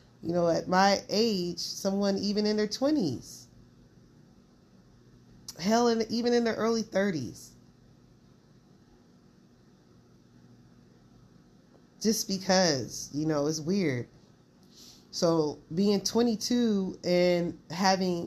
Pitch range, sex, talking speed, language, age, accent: 150-195 Hz, female, 90 wpm, English, 30-49, American